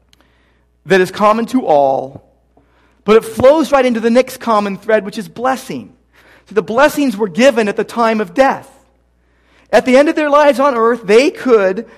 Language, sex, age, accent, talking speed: English, male, 40-59, American, 185 wpm